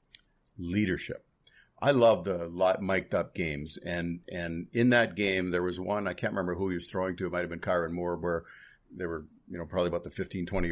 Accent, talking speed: American, 215 wpm